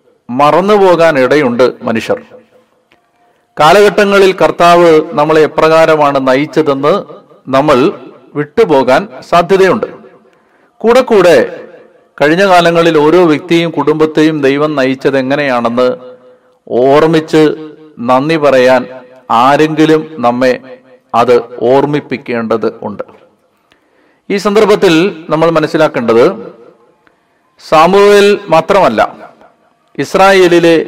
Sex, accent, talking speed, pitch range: male, native, 70 wpm, 135-175 Hz